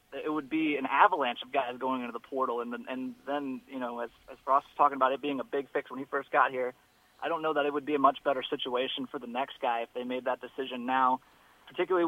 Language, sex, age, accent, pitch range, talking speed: English, male, 30-49, American, 130-155 Hz, 280 wpm